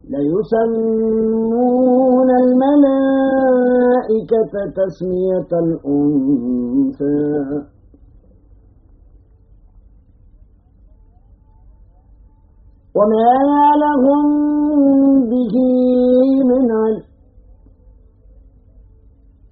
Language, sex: Arabic, male